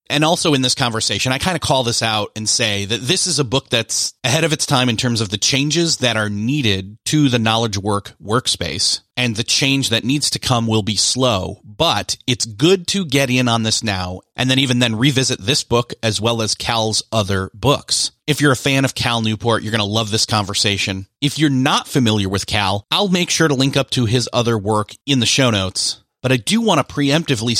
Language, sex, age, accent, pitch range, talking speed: English, male, 30-49, American, 110-145 Hz, 235 wpm